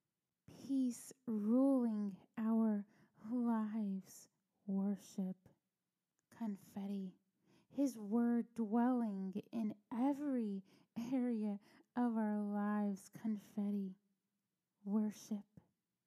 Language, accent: English, American